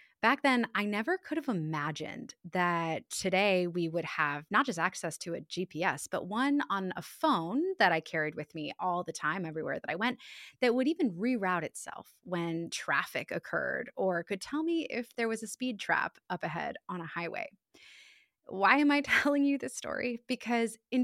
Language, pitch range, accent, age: English, 180-260 Hz, American, 20-39